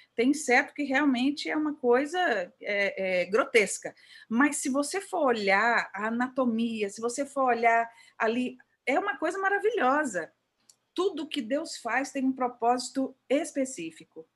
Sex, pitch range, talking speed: female, 225-285 Hz, 135 wpm